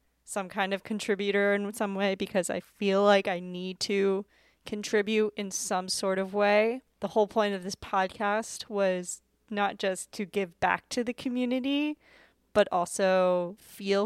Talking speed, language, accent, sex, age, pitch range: 160 wpm, English, American, female, 10-29, 185-220 Hz